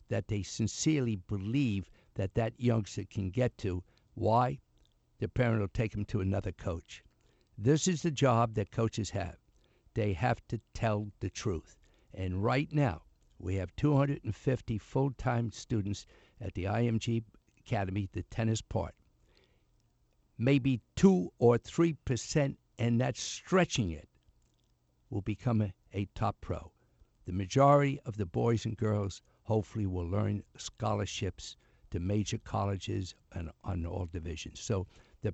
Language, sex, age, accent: English, male, 60-79, American